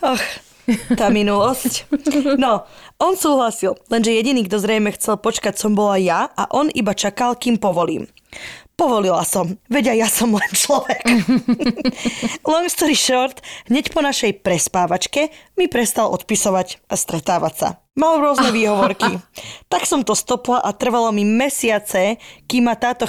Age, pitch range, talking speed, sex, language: 20-39, 195-250 Hz, 145 wpm, female, Slovak